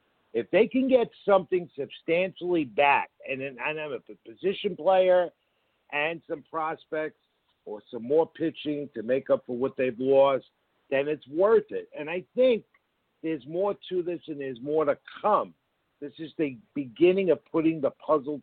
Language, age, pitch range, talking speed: English, 60-79, 135-165 Hz, 165 wpm